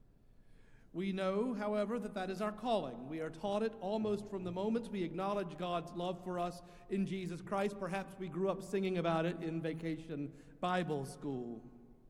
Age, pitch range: 50-69, 155-190 Hz